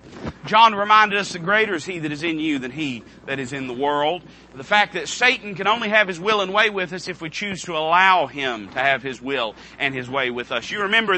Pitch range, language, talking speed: 155-210 Hz, English, 260 wpm